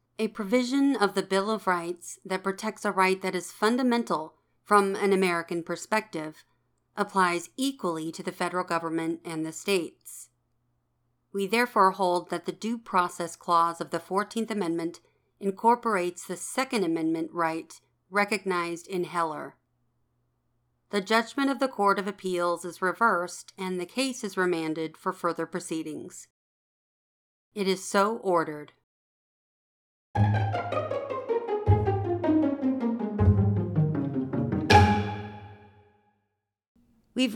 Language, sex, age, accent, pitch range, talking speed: English, female, 40-59, American, 165-210 Hz, 110 wpm